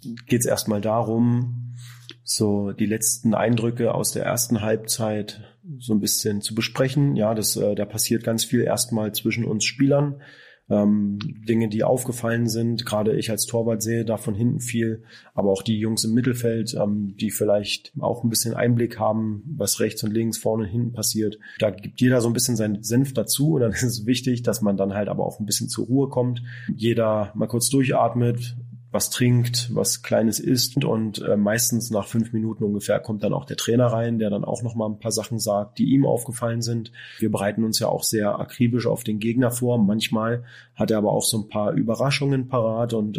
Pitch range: 110-120 Hz